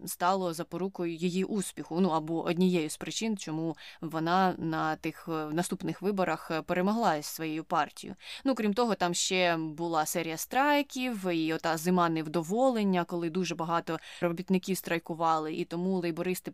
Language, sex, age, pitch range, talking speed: Ukrainian, female, 20-39, 165-190 Hz, 140 wpm